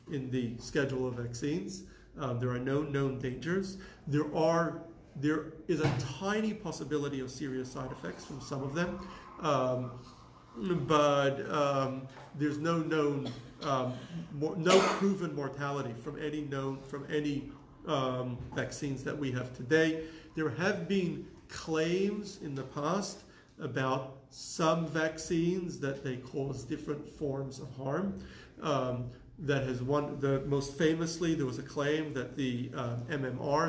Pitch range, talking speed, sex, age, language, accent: 130-155 Hz, 140 wpm, male, 40-59, English, American